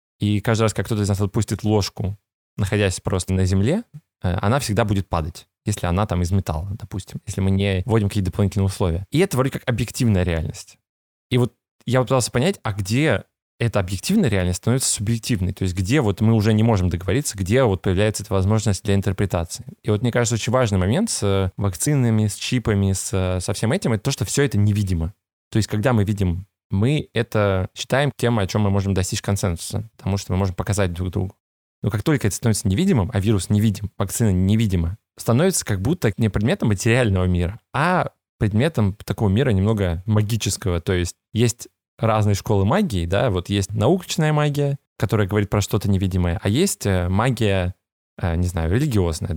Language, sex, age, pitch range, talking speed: Russian, male, 20-39, 95-115 Hz, 185 wpm